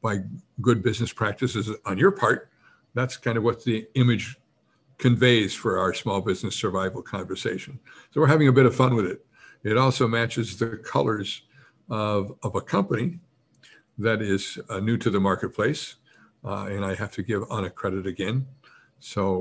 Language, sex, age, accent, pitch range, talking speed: English, male, 60-79, American, 100-125 Hz, 170 wpm